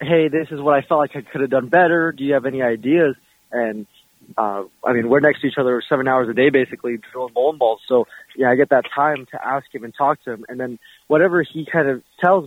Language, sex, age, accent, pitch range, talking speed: English, male, 20-39, American, 125-150 Hz, 260 wpm